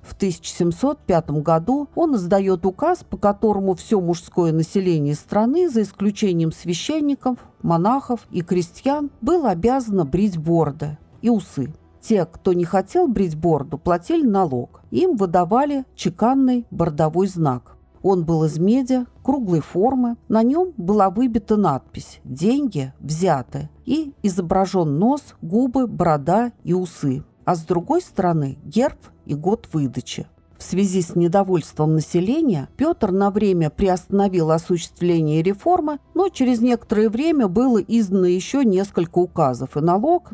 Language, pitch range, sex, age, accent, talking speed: Russian, 165-240 Hz, female, 50-69, native, 130 wpm